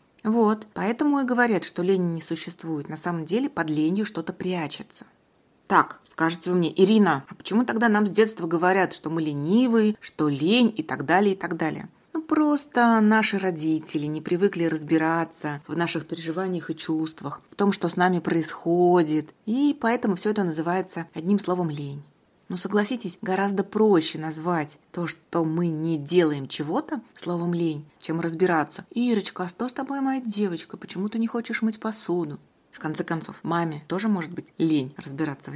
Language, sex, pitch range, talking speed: Russian, female, 160-210 Hz, 170 wpm